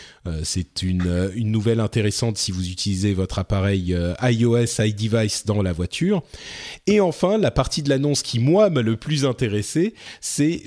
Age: 30-49